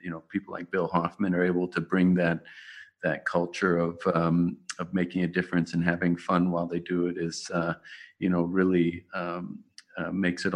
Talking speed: 200 wpm